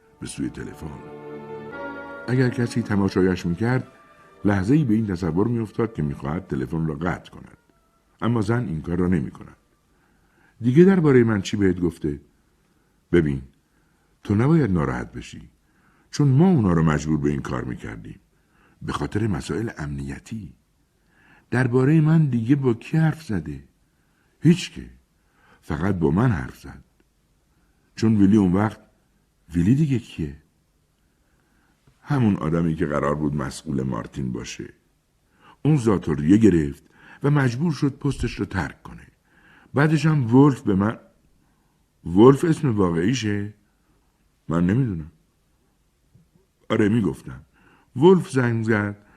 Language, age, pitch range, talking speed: Persian, 60-79, 80-125 Hz, 130 wpm